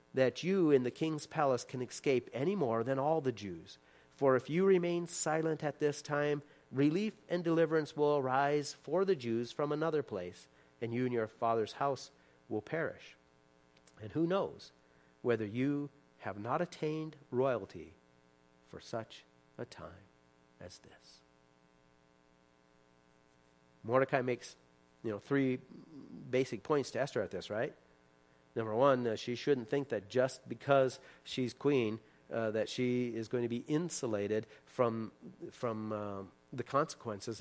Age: 40-59